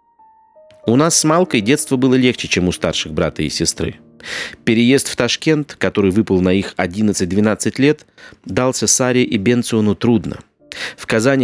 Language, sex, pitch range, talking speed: Russian, male, 95-135 Hz, 150 wpm